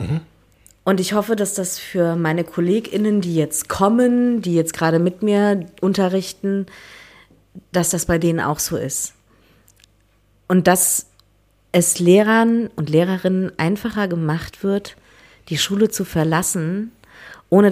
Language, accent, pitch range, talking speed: German, German, 155-195 Hz, 130 wpm